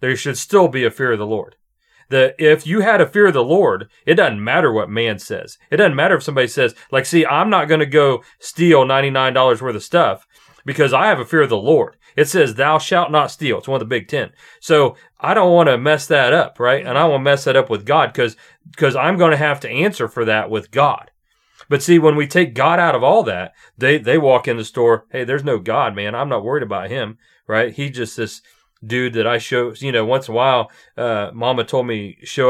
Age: 40-59